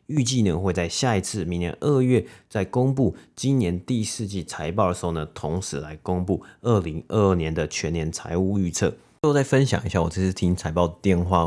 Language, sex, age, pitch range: Chinese, male, 30-49, 80-100 Hz